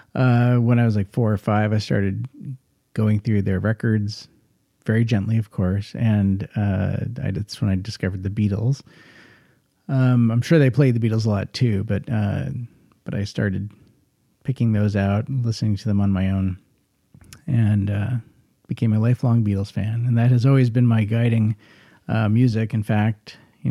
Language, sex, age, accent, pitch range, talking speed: English, male, 40-59, American, 100-125 Hz, 175 wpm